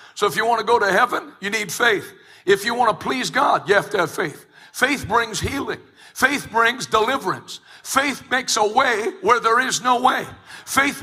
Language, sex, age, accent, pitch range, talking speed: English, male, 60-79, American, 210-270 Hz, 205 wpm